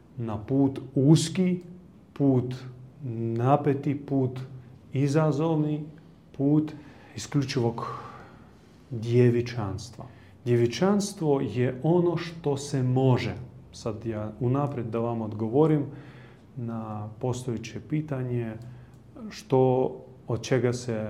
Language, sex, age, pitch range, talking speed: Croatian, male, 30-49, 115-145 Hz, 80 wpm